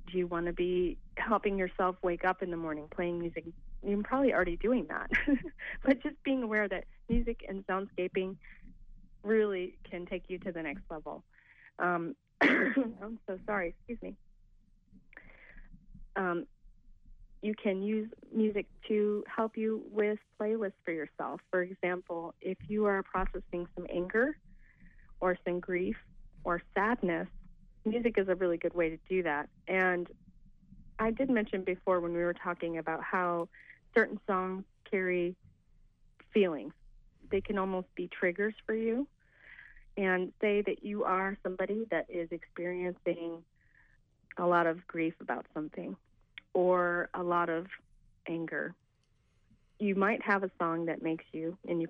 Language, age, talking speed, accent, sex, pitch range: English, 30-49, 145 wpm, American, female, 175-210 Hz